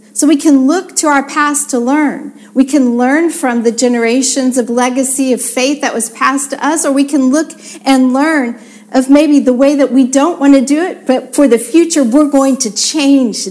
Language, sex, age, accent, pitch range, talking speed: English, female, 50-69, American, 230-285 Hz, 220 wpm